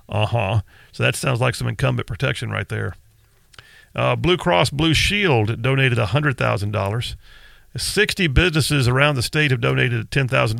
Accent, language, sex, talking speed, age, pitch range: American, English, male, 165 wpm, 40-59, 115-155 Hz